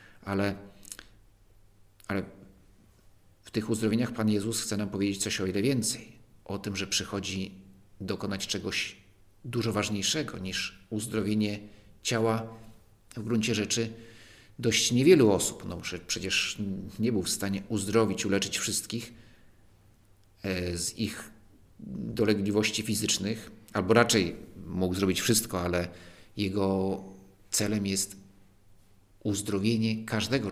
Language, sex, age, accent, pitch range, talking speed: Polish, male, 50-69, native, 100-110 Hz, 105 wpm